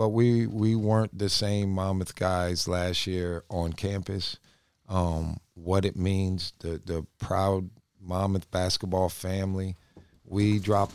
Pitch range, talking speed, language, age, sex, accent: 95-110 Hz, 130 wpm, English, 50-69, male, American